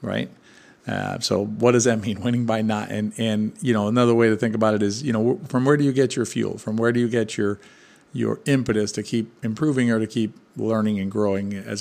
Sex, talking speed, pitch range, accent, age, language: male, 245 wpm, 105-130 Hz, American, 50-69, English